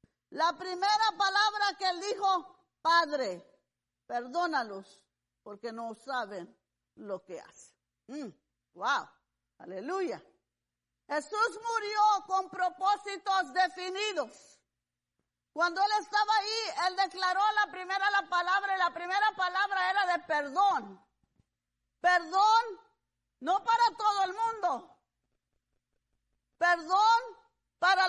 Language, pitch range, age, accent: English, 345-405 Hz, 40-59, American